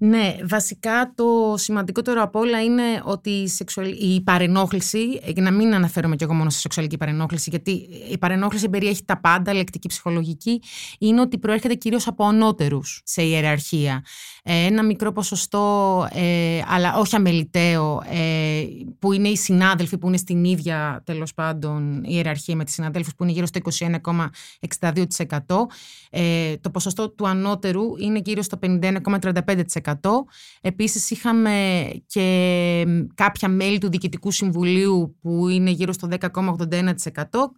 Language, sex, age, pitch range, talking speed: Greek, female, 30-49, 165-205 Hz, 140 wpm